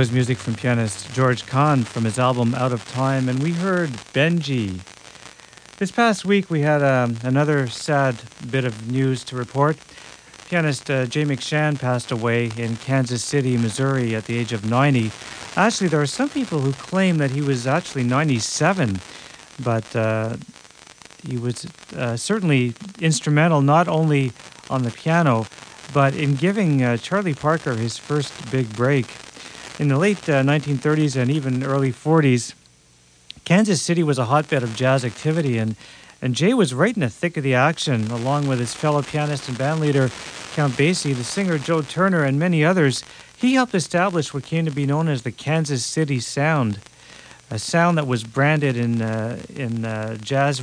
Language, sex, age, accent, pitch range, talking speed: English, male, 50-69, American, 125-155 Hz, 170 wpm